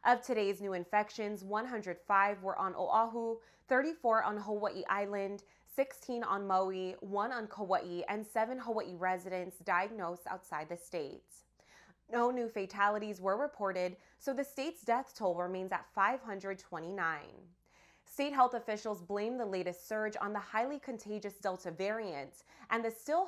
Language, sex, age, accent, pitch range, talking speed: English, female, 20-39, American, 190-235 Hz, 140 wpm